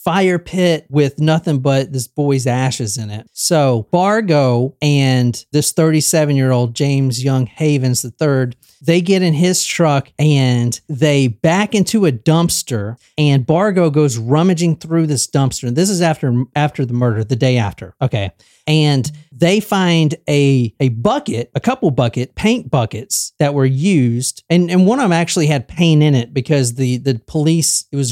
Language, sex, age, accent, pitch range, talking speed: English, male, 40-59, American, 125-170 Hz, 170 wpm